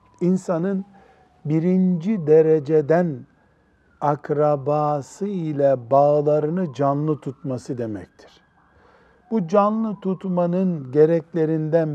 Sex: male